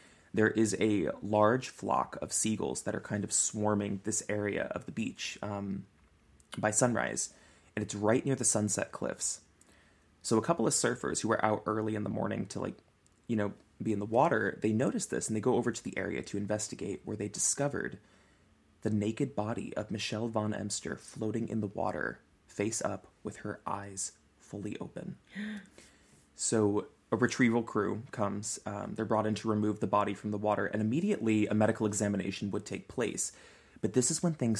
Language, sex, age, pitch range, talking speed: English, male, 20-39, 100-115 Hz, 190 wpm